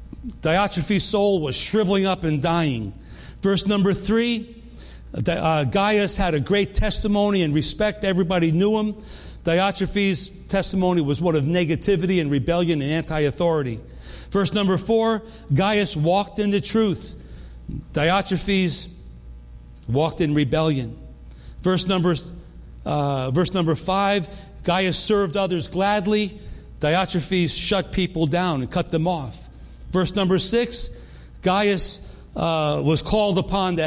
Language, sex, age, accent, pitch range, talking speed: English, male, 40-59, American, 130-195 Hz, 120 wpm